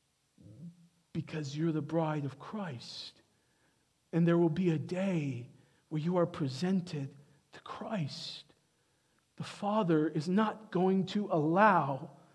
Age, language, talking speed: 50-69, English, 120 wpm